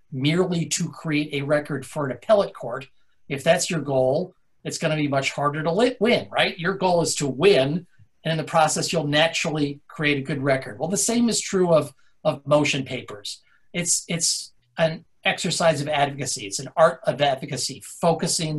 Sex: male